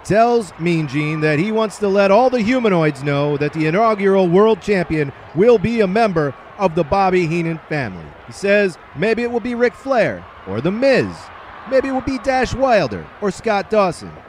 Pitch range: 155-210 Hz